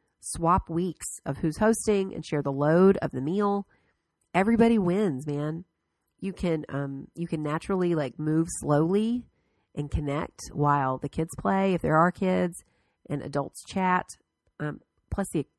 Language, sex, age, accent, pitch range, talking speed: English, female, 30-49, American, 145-190 Hz, 155 wpm